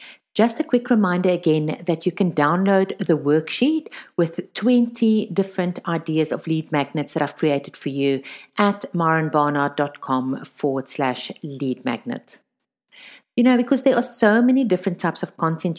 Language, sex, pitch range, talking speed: English, female, 150-210 Hz, 150 wpm